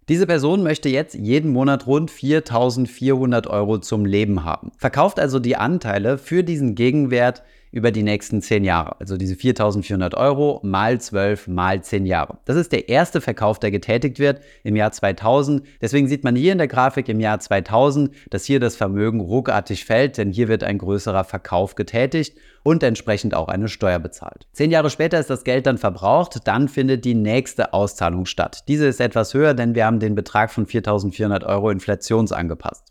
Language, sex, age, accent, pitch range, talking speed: German, male, 30-49, German, 100-135 Hz, 185 wpm